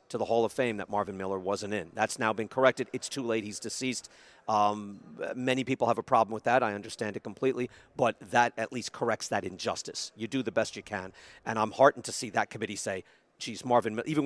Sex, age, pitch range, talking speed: male, 50-69, 110-140 Hz, 230 wpm